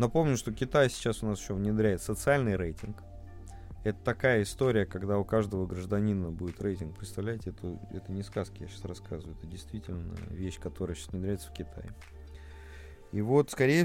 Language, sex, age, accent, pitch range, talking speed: Russian, male, 20-39, native, 95-125 Hz, 165 wpm